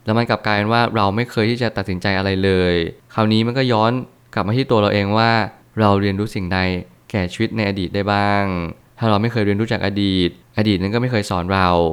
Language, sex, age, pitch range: Thai, male, 20-39, 100-115 Hz